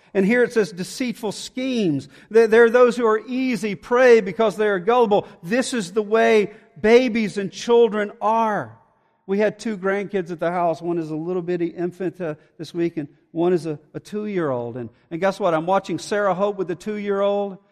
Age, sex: 50-69, male